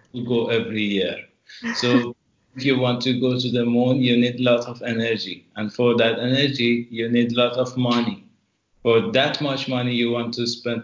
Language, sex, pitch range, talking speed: English, male, 115-130 Hz, 205 wpm